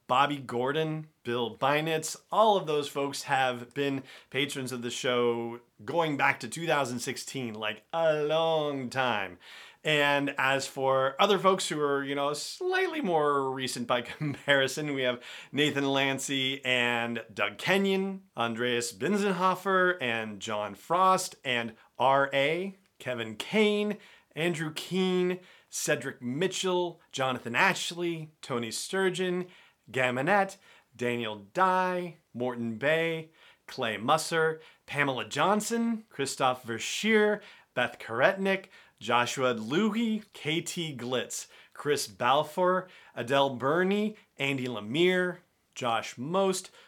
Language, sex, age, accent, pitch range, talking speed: English, male, 40-59, American, 130-185 Hz, 110 wpm